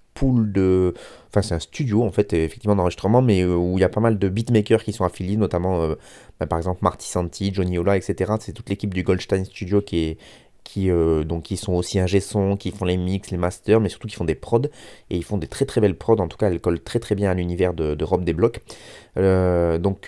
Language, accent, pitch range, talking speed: French, French, 90-110 Hz, 255 wpm